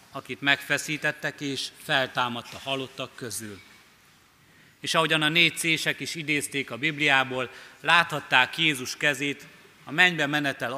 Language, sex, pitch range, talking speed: Hungarian, male, 125-150 Hz, 115 wpm